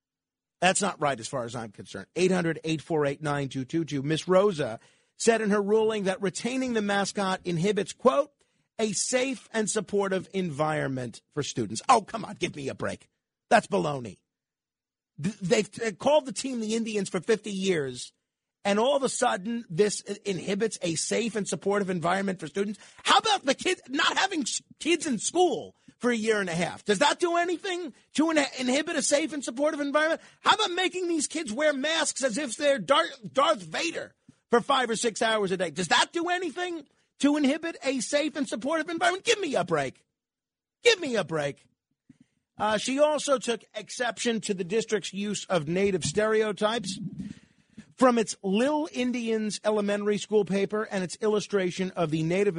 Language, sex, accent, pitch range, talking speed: English, male, American, 185-270 Hz, 170 wpm